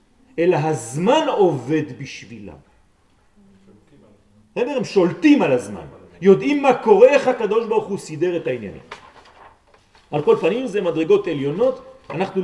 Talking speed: 110 wpm